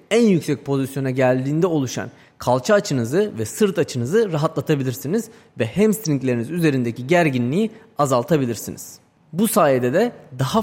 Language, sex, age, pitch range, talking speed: Turkish, male, 30-49, 130-195 Hz, 115 wpm